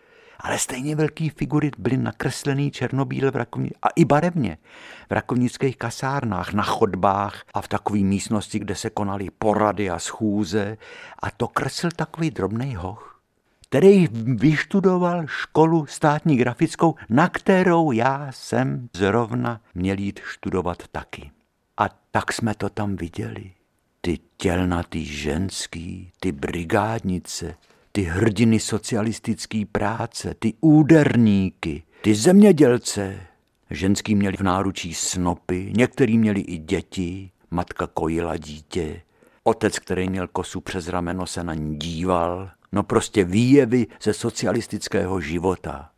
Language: Czech